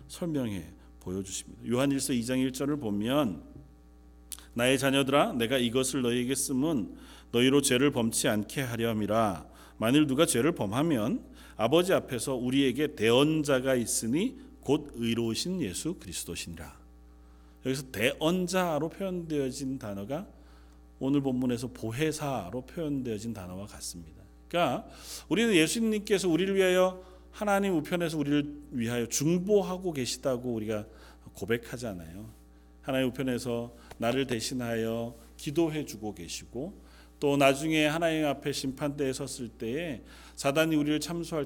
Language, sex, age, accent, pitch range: Korean, male, 40-59, native, 110-155 Hz